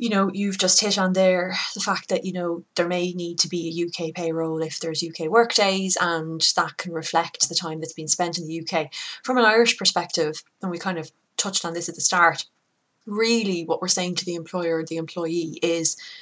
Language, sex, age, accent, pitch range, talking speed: English, female, 20-39, Irish, 160-185 Hz, 225 wpm